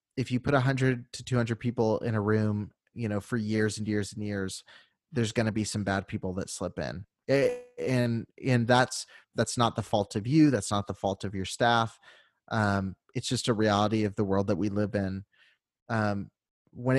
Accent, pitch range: American, 105-125 Hz